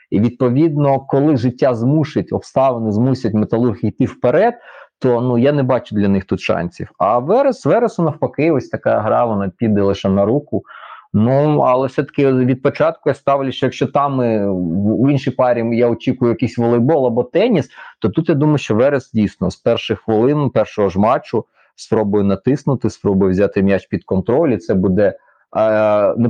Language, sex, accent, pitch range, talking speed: Ukrainian, male, native, 100-135 Hz, 165 wpm